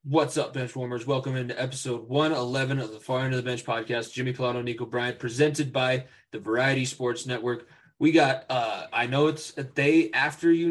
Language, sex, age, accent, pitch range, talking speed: English, male, 20-39, American, 120-135 Hz, 200 wpm